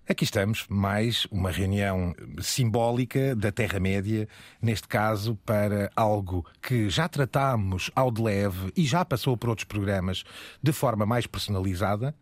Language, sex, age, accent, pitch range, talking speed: Portuguese, male, 30-49, Belgian, 105-125 Hz, 140 wpm